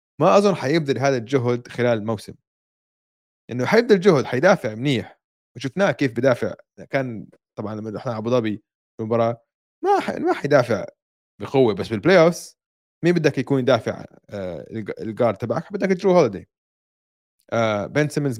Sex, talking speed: male, 135 wpm